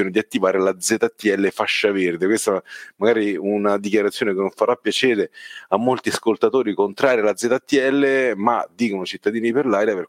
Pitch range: 100-125 Hz